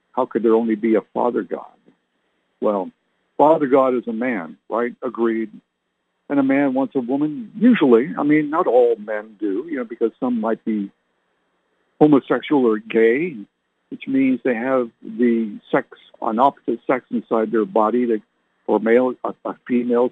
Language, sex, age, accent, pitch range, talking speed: English, male, 60-79, American, 115-145 Hz, 160 wpm